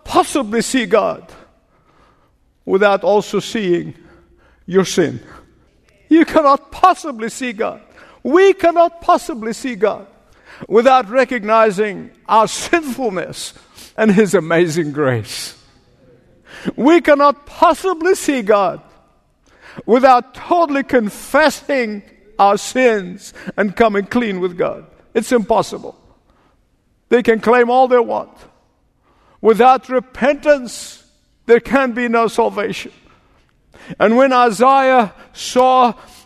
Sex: male